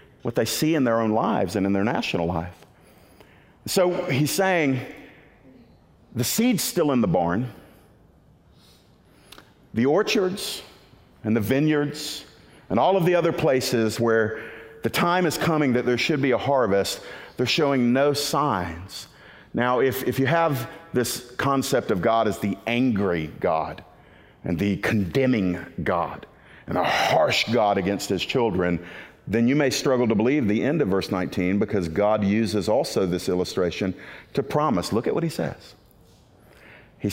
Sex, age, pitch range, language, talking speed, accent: male, 50-69, 100-135 Hz, English, 155 wpm, American